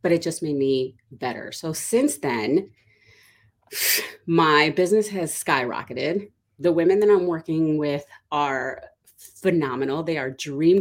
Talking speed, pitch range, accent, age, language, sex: 135 wpm, 140-180 Hz, American, 30-49, English, female